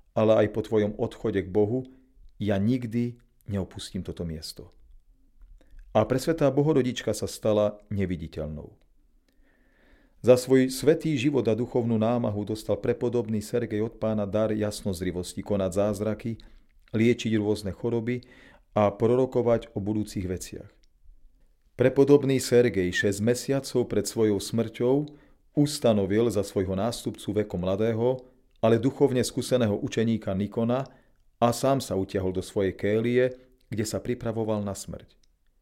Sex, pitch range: male, 100-120 Hz